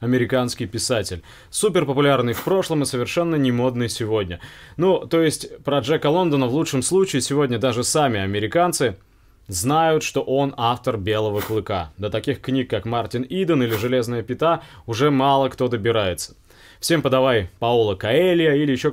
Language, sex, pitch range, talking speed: Russian, male, 115-150 Hz, 150 wpm